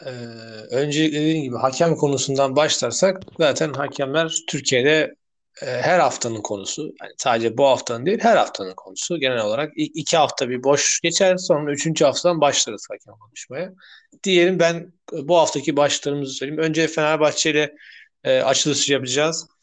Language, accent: Turkish, native